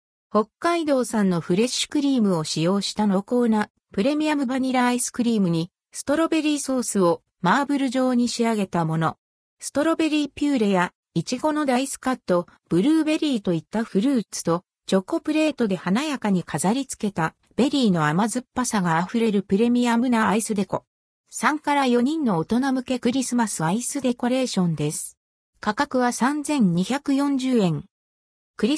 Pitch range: 190-265 Hz